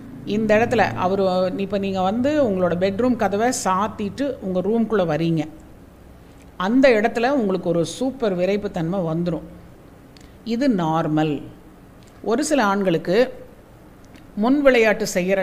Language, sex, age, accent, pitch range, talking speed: Tamil, female, 50-69, native, 170-225 Hz, 110 wpm